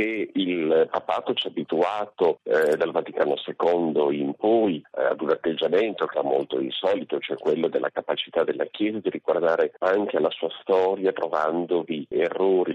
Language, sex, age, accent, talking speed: Italian, male, 40-59, native, 155 wpm